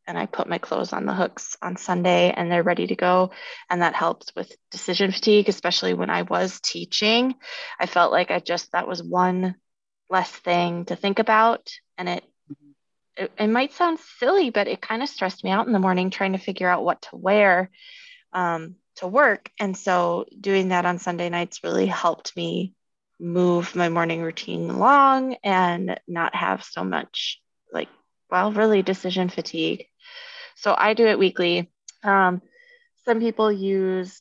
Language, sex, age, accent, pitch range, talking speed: English, female, 20-39, American, 180-240 Hz, 175 wpm